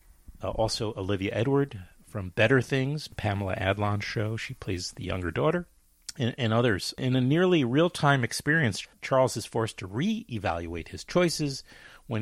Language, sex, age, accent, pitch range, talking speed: English, male, 40-59, American, 95-125 Hz, 150 wpm